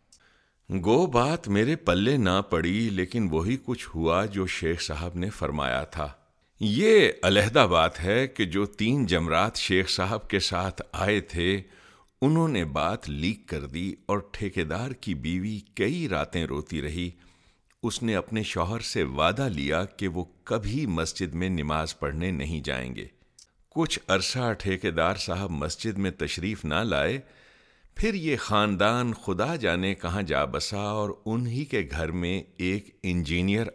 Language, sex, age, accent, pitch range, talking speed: English, male, 50-69, Indian, 85-115 Hz, 145 wpm